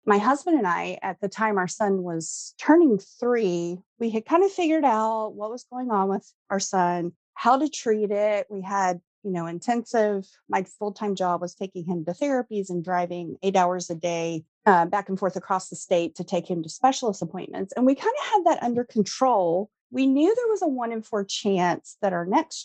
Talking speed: 215 wpm